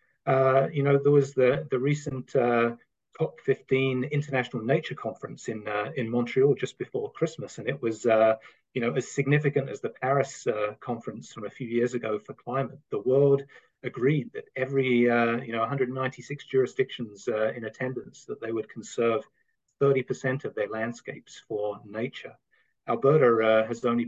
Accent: British